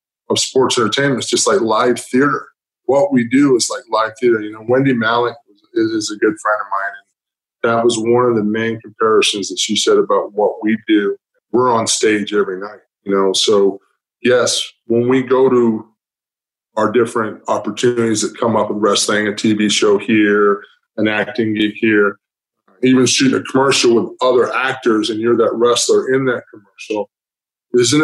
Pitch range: 105-130 Hz